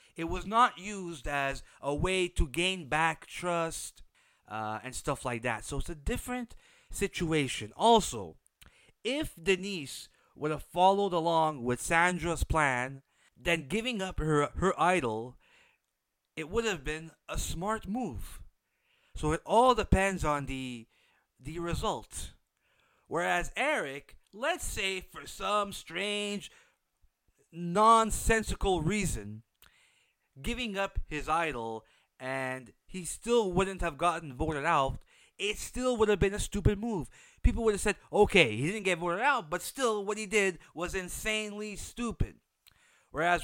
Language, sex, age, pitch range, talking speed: English, male, 30-49, 145-200 Hz, 140 wpm